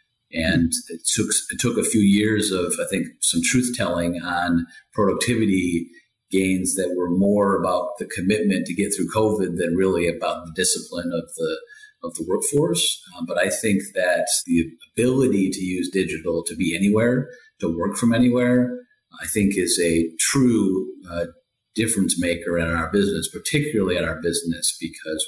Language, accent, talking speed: English, American, 165 wpm